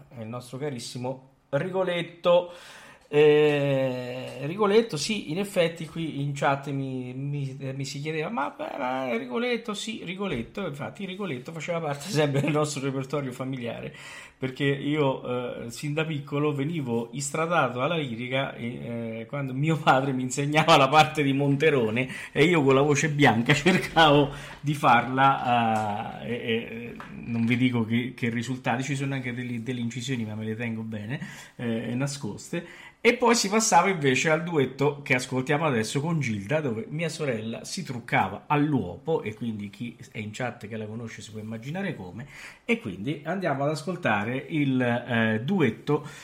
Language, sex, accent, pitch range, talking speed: Italian, male, native, 120-150 Hz, 160 wpm